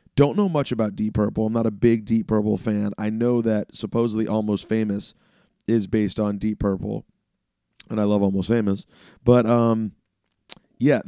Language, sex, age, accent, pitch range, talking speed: English, male, 30-49, American, 100-115 Hz, 175 wpm